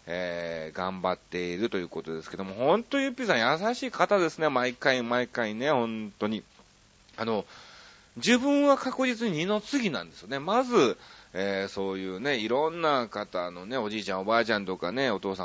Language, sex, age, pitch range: Japanese, male, 30-49, 100-155 Hz